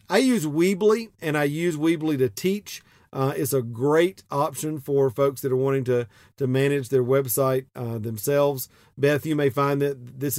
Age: 40-59